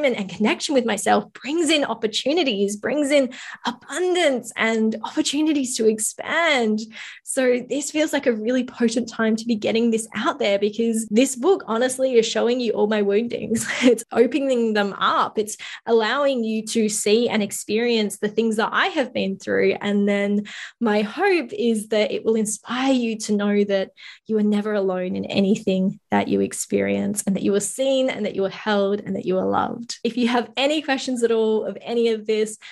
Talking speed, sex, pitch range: 195 wpm, female, 205-245 Hz